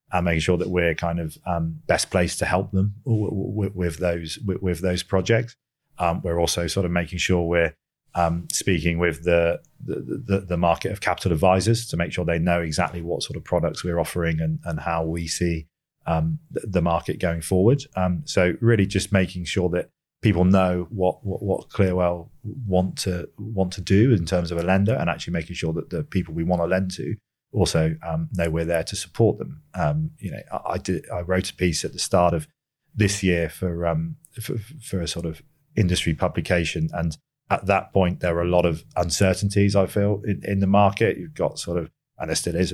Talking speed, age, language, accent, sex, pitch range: 215 wpm, 40-59, English, British, male, 85-100 Hz